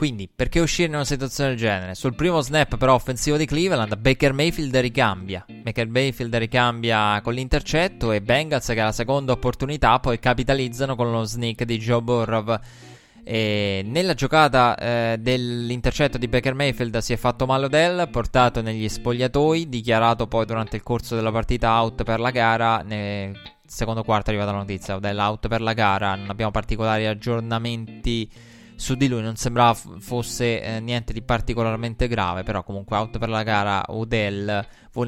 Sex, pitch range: male, 110-125 Hz